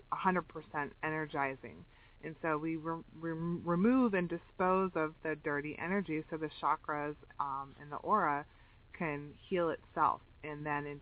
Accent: American